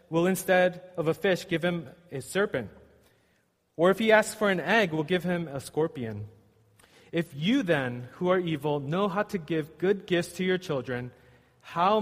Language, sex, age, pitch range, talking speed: English, male, 30-49, 140-185 Hz, 185 wpm